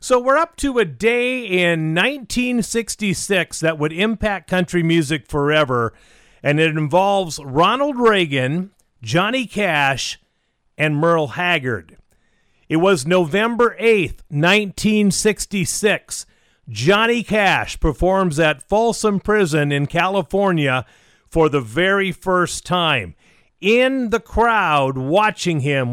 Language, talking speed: English, 110 wpm